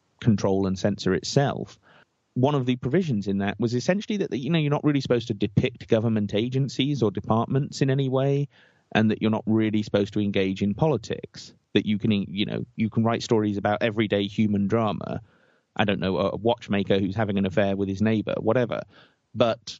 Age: 30-49